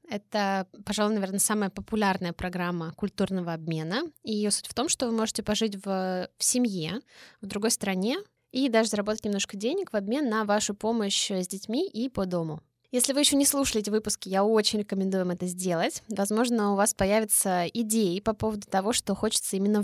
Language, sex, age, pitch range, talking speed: Russian, female, 20-39, 190-235 Hz, 180 wpm